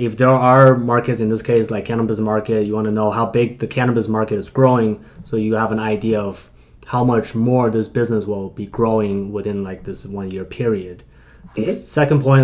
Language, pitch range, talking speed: English, 110-130 Hz, 210 wpm